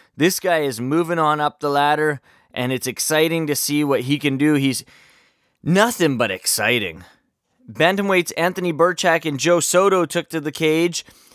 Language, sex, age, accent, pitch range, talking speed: English, male, 20-39, American, 140-175 Hz, 165 wpm